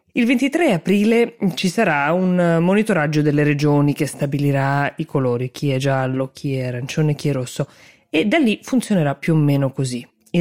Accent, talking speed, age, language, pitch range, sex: native, 180 wpm, 20-39, Italian, 145-180 Hz, female